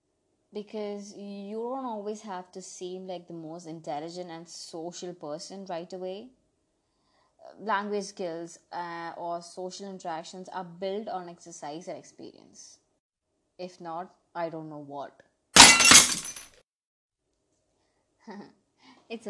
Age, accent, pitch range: 20-39, Indian, 170-210 Hz